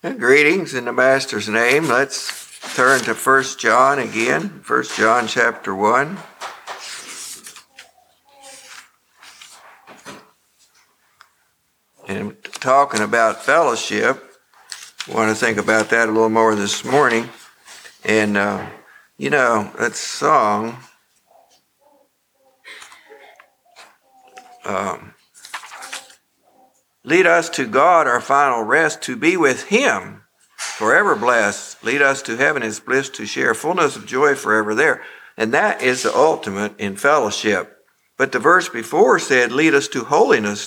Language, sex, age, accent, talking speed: English, male, 60-79, American, 115 wpm